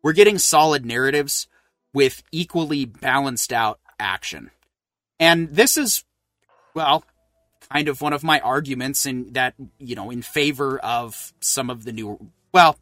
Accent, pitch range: American, 135-205 Hz